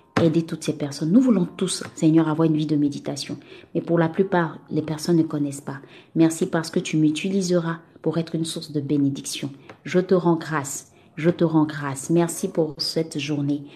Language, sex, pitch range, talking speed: French, female, 150-175 Hz, 195 wpm